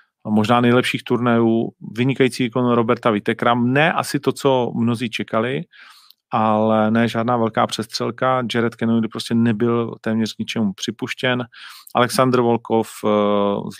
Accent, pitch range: native, 110-120 Hz